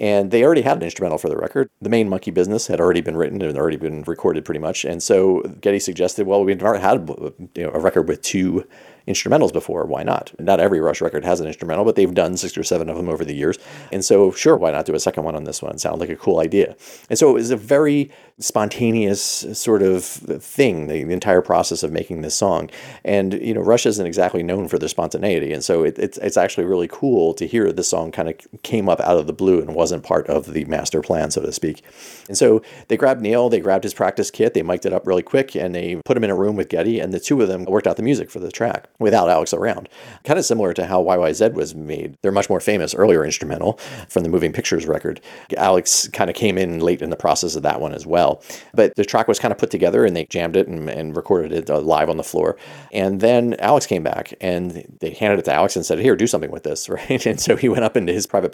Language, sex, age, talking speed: English, male, 40-59, 255 wpm